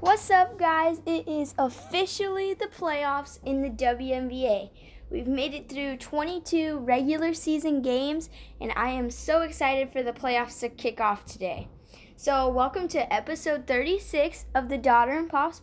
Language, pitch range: English, 245-295 Hz